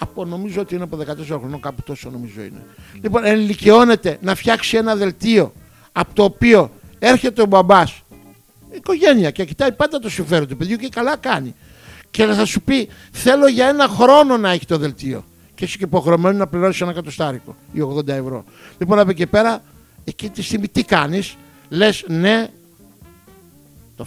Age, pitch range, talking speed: 60-79, 160-220 Hz, 175 wpm